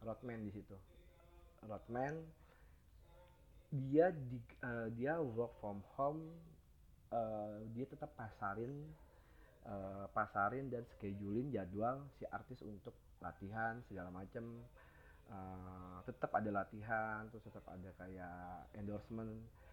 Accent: native